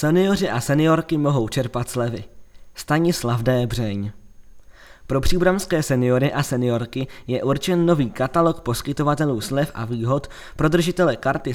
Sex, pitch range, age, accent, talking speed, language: male, 120-145 Hz, 20-39, native, 130 wpm, Czech